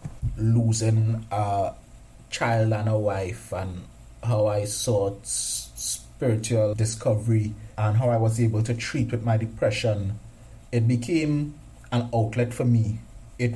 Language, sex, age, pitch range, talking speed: English, male, 30-49, 105-120 Hz, 130 wpm